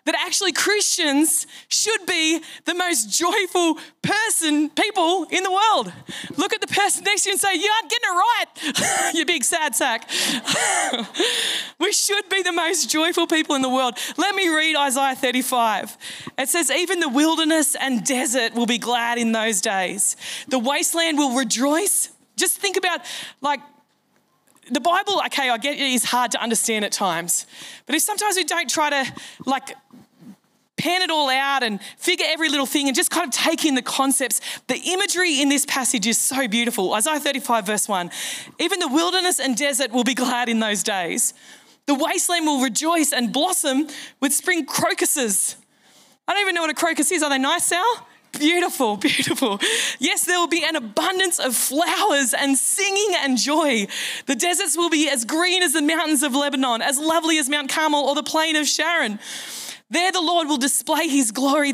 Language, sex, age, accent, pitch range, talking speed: English, female, 20-39, Australian, 260-345 Hz, 185 wpm